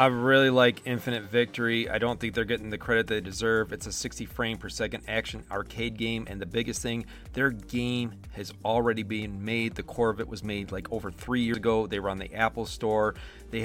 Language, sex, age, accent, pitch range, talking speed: English, male, 40-59, American, 110-130 Hz, 225 wpm